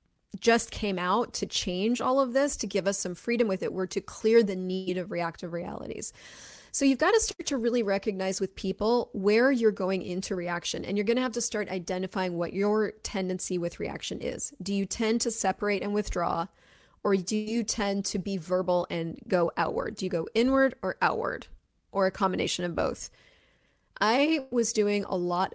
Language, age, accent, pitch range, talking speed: English, 20-39, American, 185-240 Hz, 200 wpm